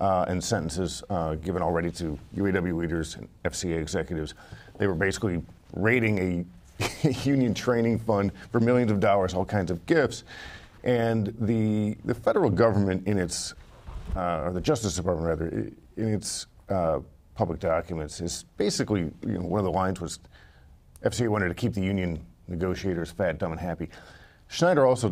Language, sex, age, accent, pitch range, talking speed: English, male, 40-59, American, 85-105 Hz, 160 wpm